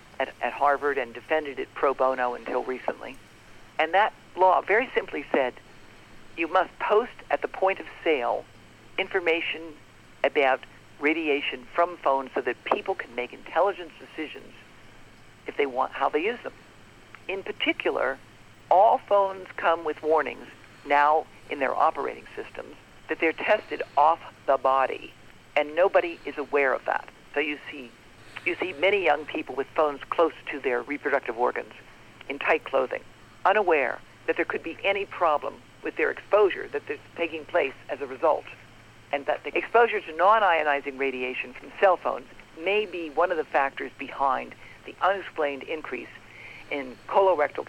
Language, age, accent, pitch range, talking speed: English, 50-69, American, 130-180 Hz, 155 wpm